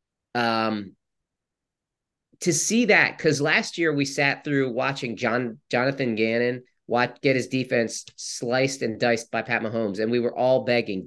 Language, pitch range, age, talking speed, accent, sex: English, 115-140 Hz, 30-49, 155 wpm, American, male